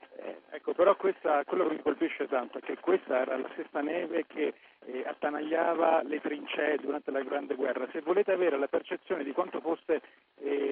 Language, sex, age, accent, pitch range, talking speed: Italian, male, 40-59, native, 130-165 Hz, 185 wpm